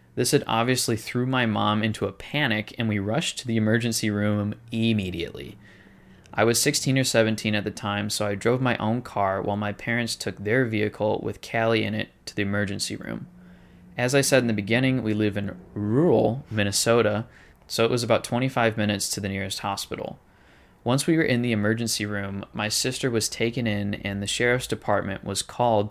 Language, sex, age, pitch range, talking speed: English, male, 20-39, 100-120 Hz, 195 wpm